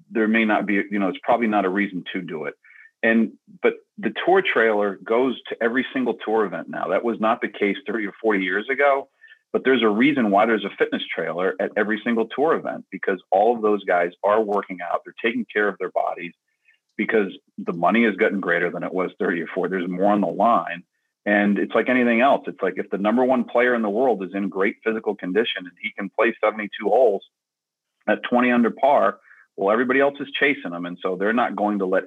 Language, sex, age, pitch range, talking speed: English, male, 40-59, 95-115 Hz, 230 wpm